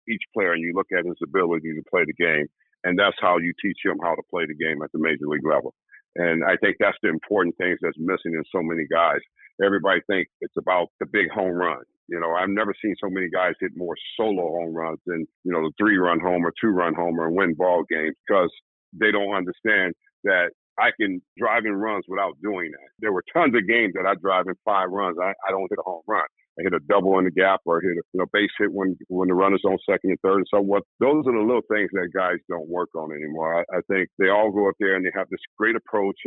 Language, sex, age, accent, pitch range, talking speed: English, male, 50-69, American, 90-110 Hz, 260 wpm